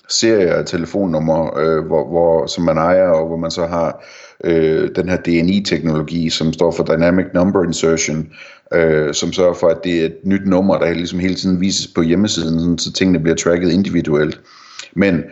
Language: Danish